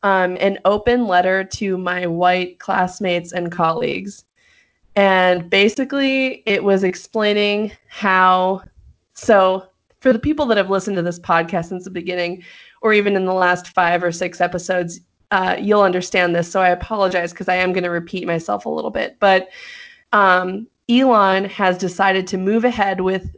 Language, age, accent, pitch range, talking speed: English, 20-39, American, 180-205 Hz, 160 wpm